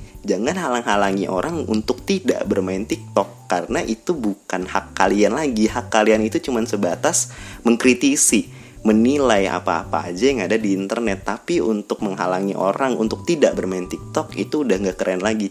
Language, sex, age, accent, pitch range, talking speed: Indonesian, male, 20-39, native, 100-125 Hz, 150 wpm